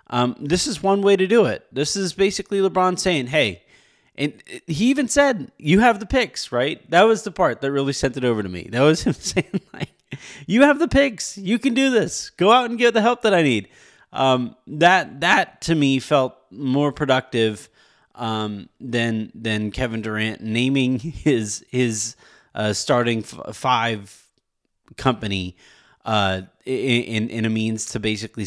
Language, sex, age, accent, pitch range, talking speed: English, male, 30-49, American, 110-150 Hz, 175 wpm